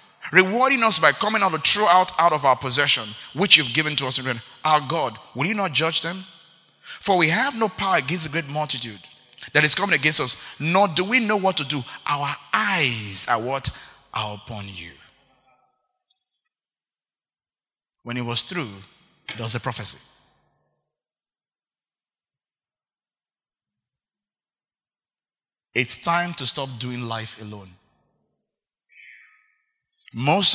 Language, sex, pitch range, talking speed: English, male, 130-195 Hz, 130 wpm